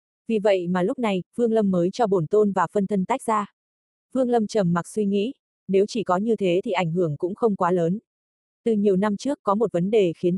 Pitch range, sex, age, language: 185-220 Hz, female, 20-39, Vietnamese